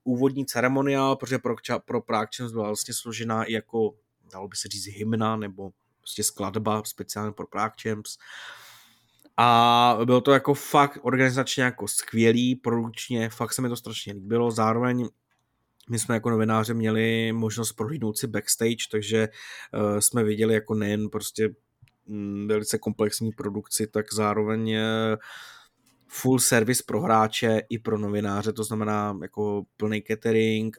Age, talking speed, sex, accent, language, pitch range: 20-39, 140 wpm, male, native, Czech, 105-115 Hz